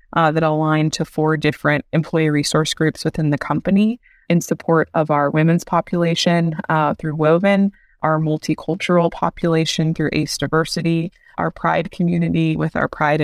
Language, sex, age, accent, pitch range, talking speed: English, female, 20-39, American, 150-170 Hz, 150 wpm